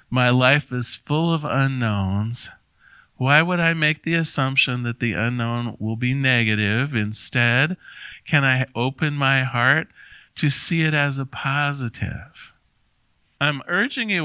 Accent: American